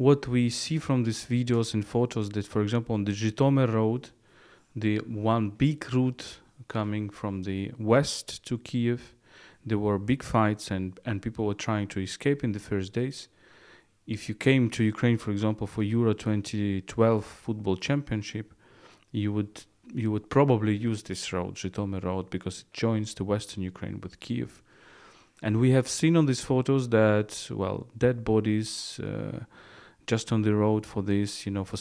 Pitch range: 100-120 Hz